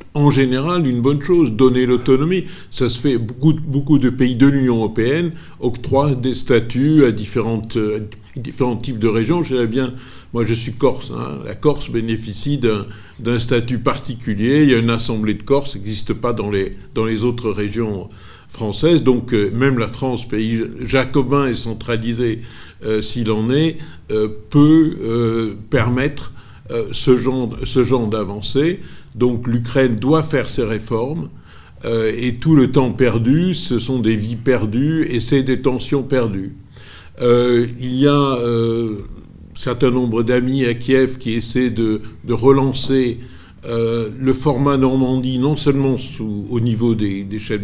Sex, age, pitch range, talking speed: male, 50-69, 110-135 Hz, 165 wpm